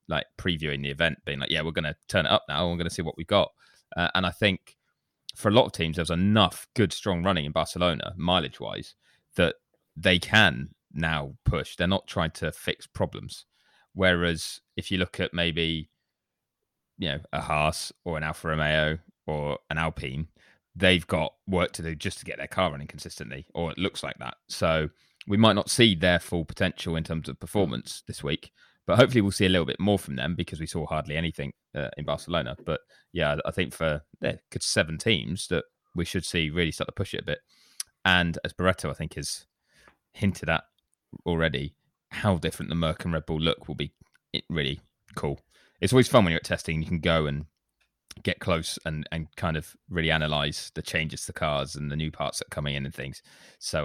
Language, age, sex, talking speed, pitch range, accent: English, 20-39, male, 215 wpm, 75-90 Hz, British